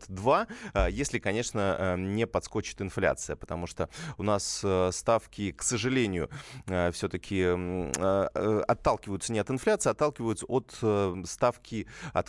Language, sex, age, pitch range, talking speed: Russian, male, 20-39, 95-115 Hz, 105 wpm